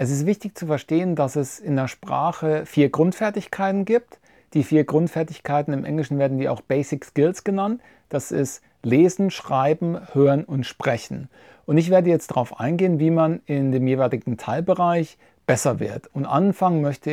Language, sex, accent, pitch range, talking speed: English, male, German, 140-165 Hz, 170 wpm